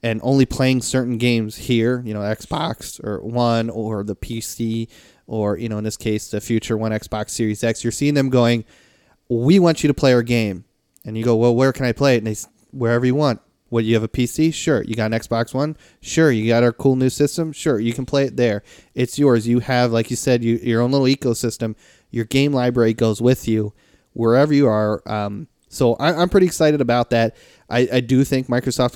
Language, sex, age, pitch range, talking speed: English, male, 30-49, 110-130 Hz, 225 wpm